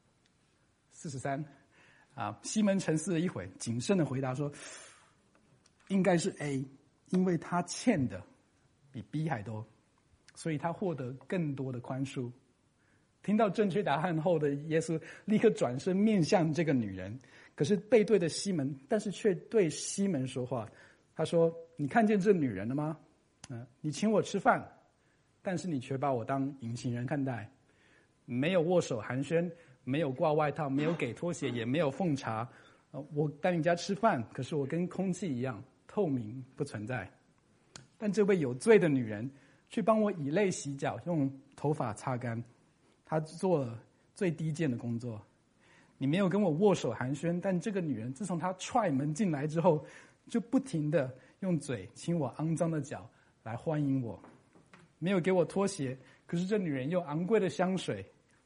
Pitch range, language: 130-180 Hz, English